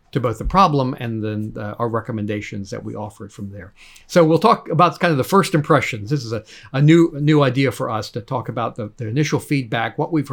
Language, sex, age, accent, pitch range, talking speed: English, male, 50-69, American, 115-150 Hz, 245 wpm